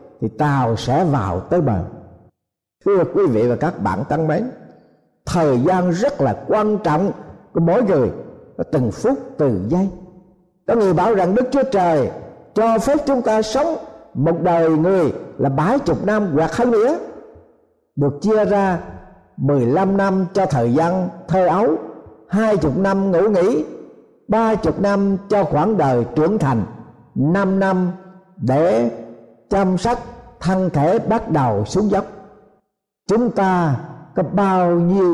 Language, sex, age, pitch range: Thai, male, 60-79, 145-205 Hz